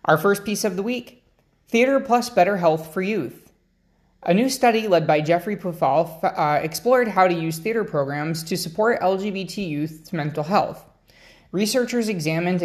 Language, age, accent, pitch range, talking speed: English, 20-39, American, 150-185 Hz, 160 wpm